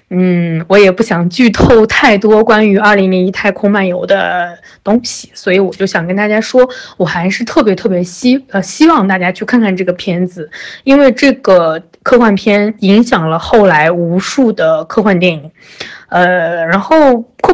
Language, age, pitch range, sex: Chinese, 20-39, 180-230 Hz, female